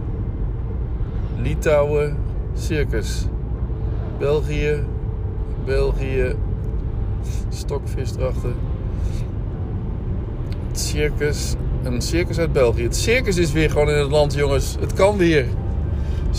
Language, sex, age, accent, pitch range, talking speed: Italian, male, 60-79, Dutch, 95-115 Hz, 90 wpm